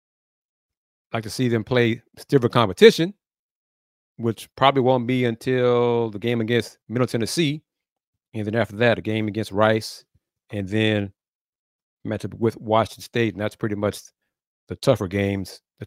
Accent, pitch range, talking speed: American, 110-140 Hz, 150 wpm